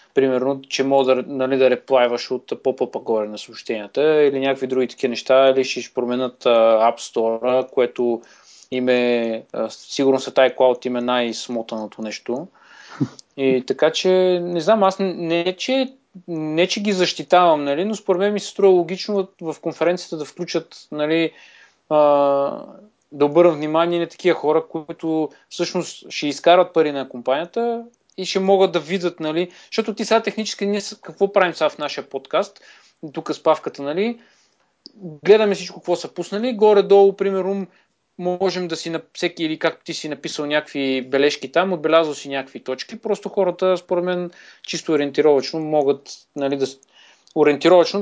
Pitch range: 135-185 Hz